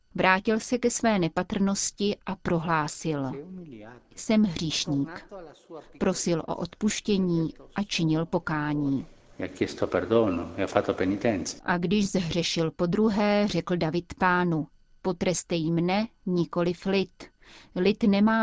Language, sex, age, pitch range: Czech, female, 30-49, 160-195 Hz